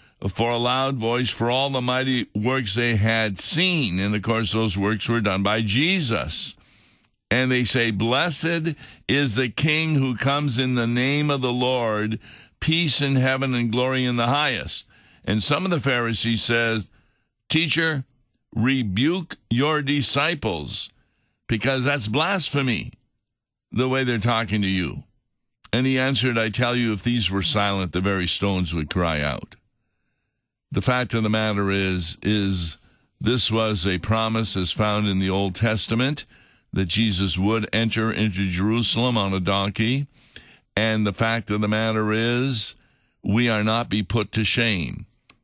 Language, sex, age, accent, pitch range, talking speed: English, male, 50-69, American, 105-130 Hz, 155 wpm